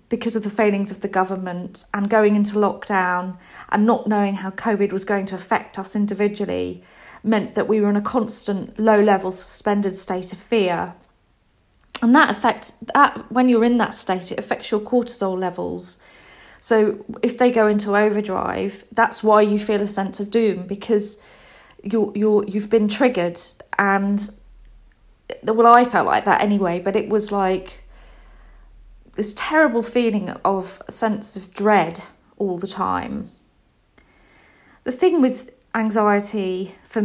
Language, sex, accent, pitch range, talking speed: English, female, British, 190-225 Hz, 155 wpm